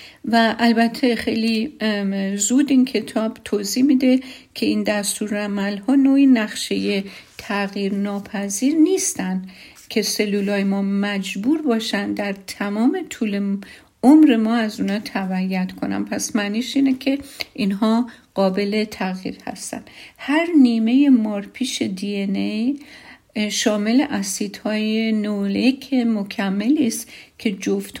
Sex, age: female, 50-69